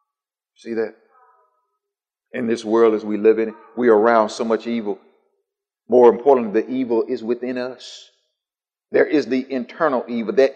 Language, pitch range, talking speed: English, 185-255 Hz, 165 wpm